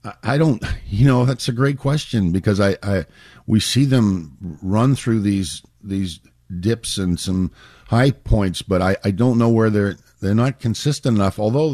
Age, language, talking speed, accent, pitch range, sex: 50-69, English, 180 wpm, American, 95-115 Hz, male